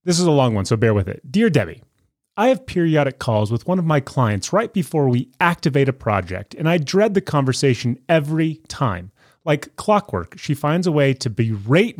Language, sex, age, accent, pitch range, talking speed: English, male, 30-49, American, 115-165 Hz, 205 wpm